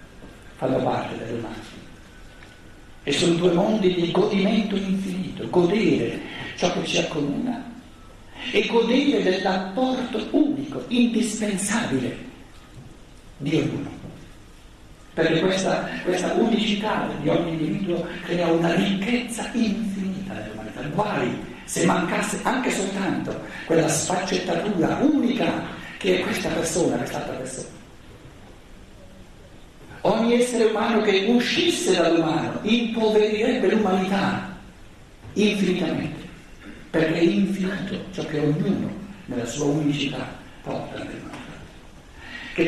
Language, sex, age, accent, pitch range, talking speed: Italian, male, 60-79, native, 165-230 Hz, 105 wpm